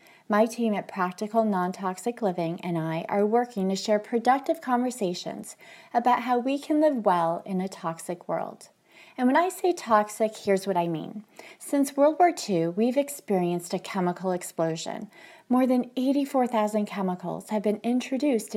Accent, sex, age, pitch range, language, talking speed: American, female, 30-49, 190-250 Hz, English, 160 wpm